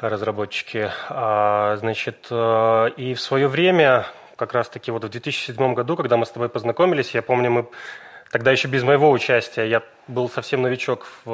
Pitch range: 120-145 Hz